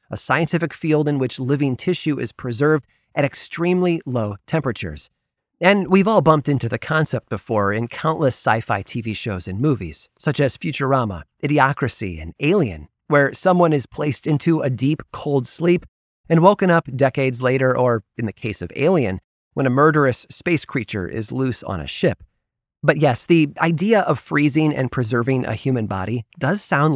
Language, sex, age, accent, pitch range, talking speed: English, male, 30-49, American, 115-160 Hz, 170 wpm